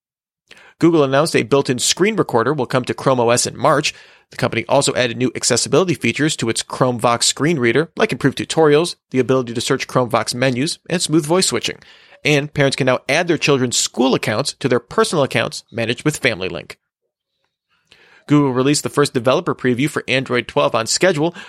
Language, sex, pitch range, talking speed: English, male, 125-160 Hz, 185 wpm